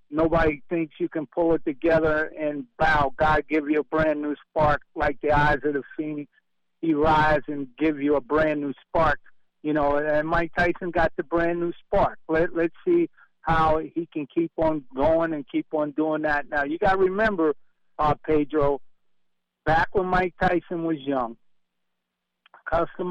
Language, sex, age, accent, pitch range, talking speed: English, male, 50-69, American, 145-170 Hz, 180 wpm